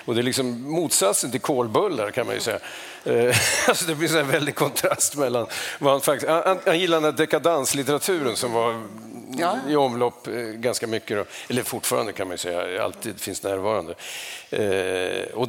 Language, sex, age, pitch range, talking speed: English, male, 50-69, 115-140 Hz, 165 wpm